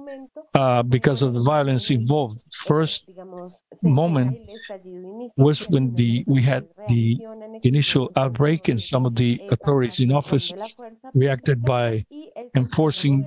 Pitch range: 125-175 Hz